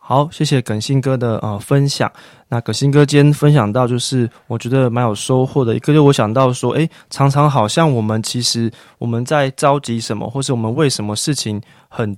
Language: Chinese